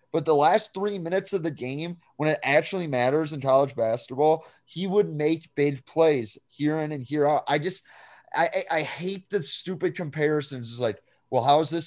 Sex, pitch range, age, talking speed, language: male, 145-185 Hz, 30-49, 195 wpm, English